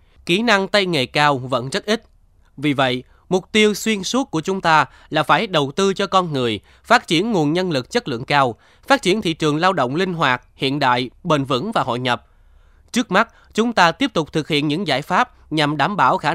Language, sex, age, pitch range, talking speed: Vietnamese, male, 20-39, 130-185 Hz, 230 wpm